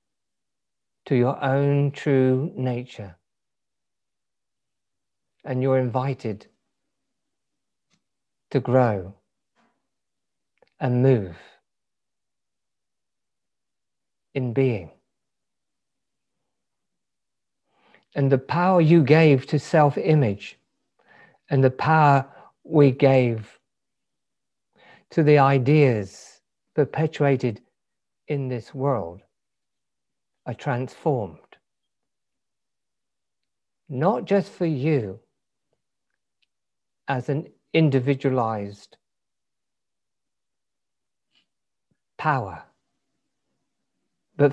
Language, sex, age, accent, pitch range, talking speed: English, male, 50-69, British, 120-150 Hz, 60 wpm